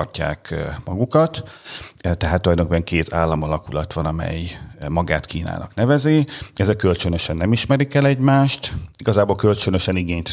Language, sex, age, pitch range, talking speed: Hungarian, male, 40-59, 85-100 Hz, 110 wpm